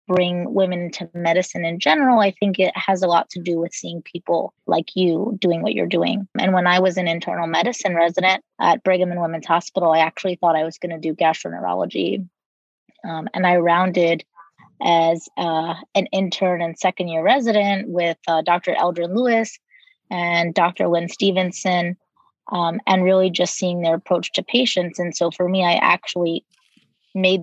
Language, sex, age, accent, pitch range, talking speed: English, female, 20-39, American, 170-190 Hz, 180 wpm